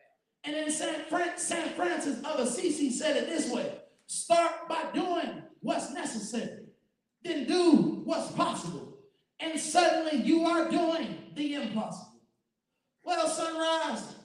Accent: American